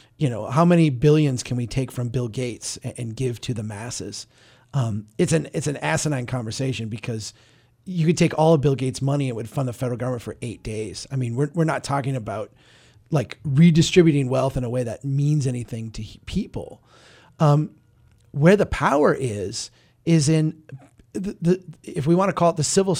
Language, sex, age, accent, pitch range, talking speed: English, male, 30-49, American, 125-165 Hz, 200 wpm